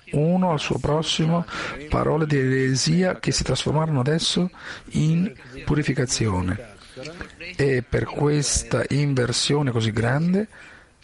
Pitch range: 125-160 Hz